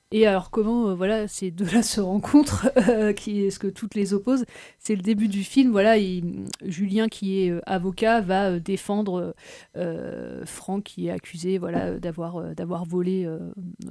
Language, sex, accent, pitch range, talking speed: French, female, French, 180-215 Hz, 165 wpm